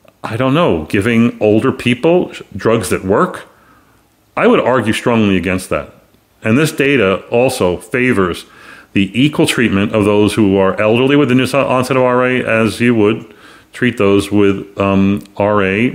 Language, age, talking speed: English, 40-59, 160 wpm